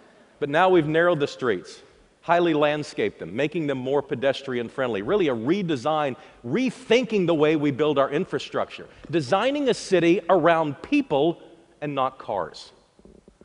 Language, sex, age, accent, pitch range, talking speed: Russian, male, 50-69, American, 115-155 Hz, 145 wpm